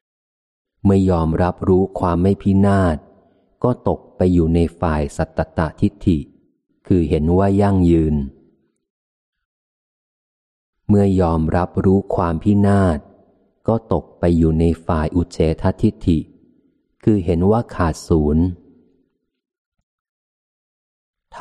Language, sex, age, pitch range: Thai, male, 30-49, 80-100 Hz